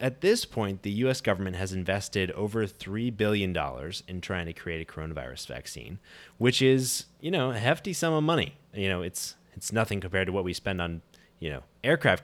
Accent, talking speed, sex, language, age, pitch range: American, 200 wpm, male, English, 20-39, 85-110 Hz